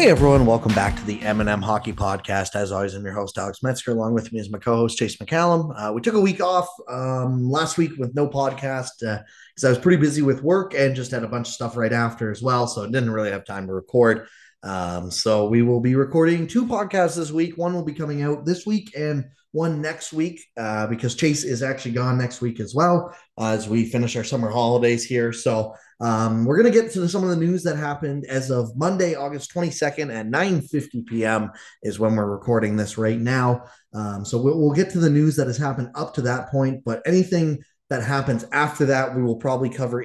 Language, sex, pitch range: English, male, 110-150 Hz